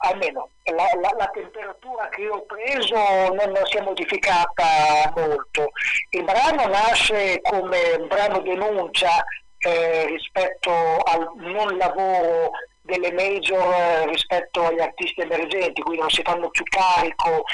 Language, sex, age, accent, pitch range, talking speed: Italian, male, 40-59, native, 165-220 Hz, 135 wpm